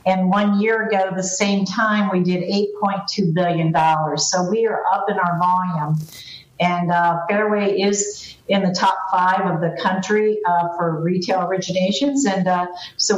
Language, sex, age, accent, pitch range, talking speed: English, female, 50-69, American, 175-205 Hz, 170 wpm